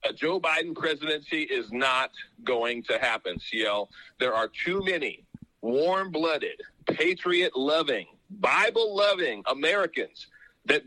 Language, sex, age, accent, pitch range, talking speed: English, male, 40-59, American, 130-190 Hz, 105 wpm